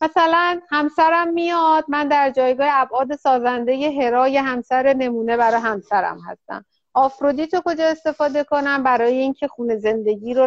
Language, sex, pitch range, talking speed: Persian, female, 235-300 Hz, 140 wpm